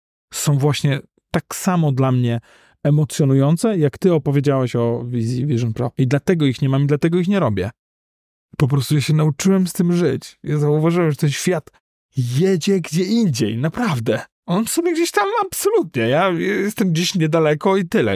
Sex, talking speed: male, 170 wpm